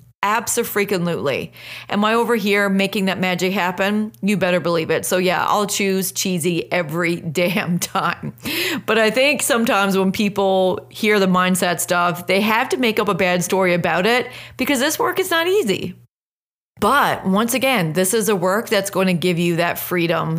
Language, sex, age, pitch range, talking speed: English, female, 30-49, 175-205 Hz, 180 wpm